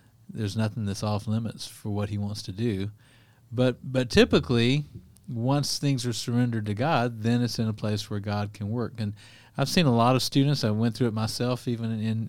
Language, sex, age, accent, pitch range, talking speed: English, male, 40-59, American, 105-125 Hz, 210 wpm